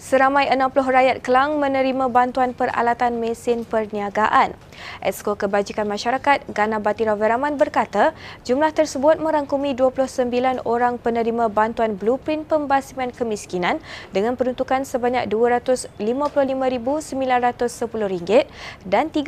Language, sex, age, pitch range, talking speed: Malay, female, 20-39, 225-270 Hz, 95 wpm